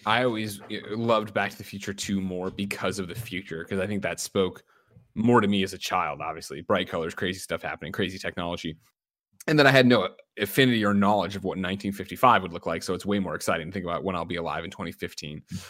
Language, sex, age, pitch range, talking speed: English, male, 20-39, 95-115 Hz, 230 wpm